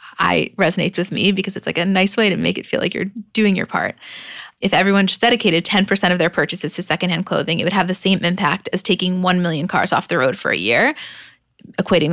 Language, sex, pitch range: English, female, 175-205 Hz